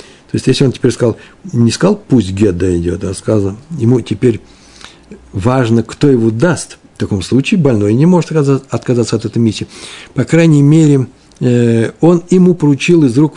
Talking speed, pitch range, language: 165 wpm, 110-145 Hz, Russian